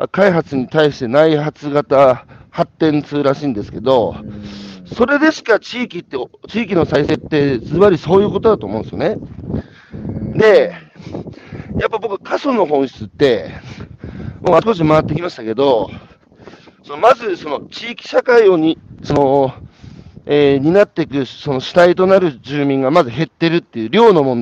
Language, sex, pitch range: Japanese, male, 135-210 Hz